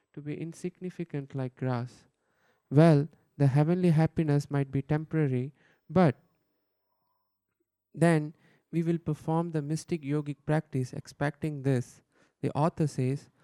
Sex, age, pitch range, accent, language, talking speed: male, 20-39, 140-170 Hz, Indian, English, 115 wpm